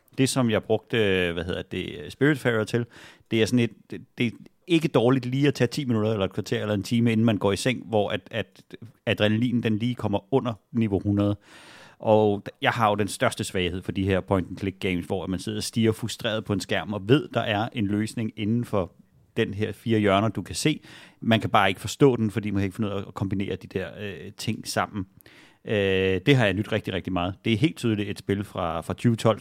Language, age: Danish, 30-49